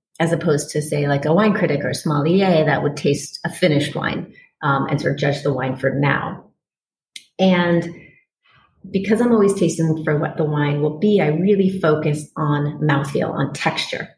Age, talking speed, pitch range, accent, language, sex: 30-49, 185 wpm, 150-175 Hz, American, English, female